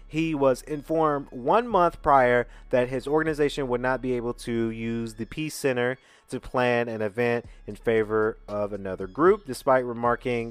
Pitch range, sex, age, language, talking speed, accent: 110-140 Hz, male, 30-49, English, 165 wpm, American